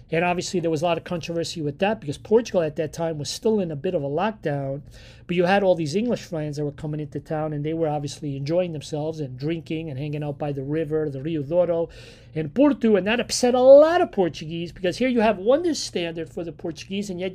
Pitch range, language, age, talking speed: 150-190 Hz, English, 40-59, 250 wpm